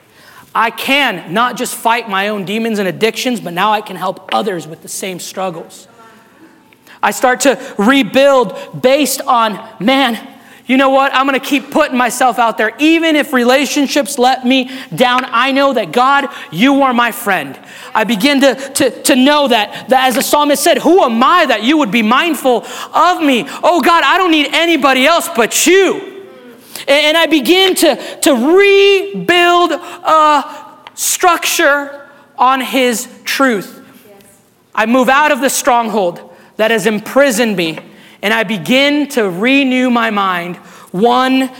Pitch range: 195-275 Hz